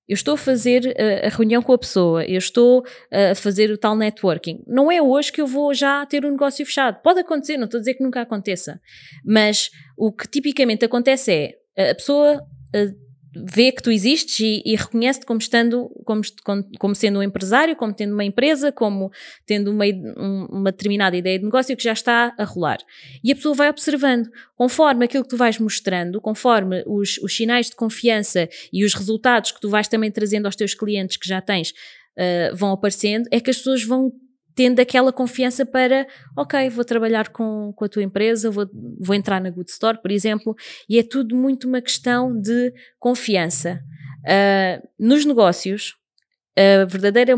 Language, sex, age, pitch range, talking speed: Portuguese, female, 20-39, 200-250 Hz, 185 wpm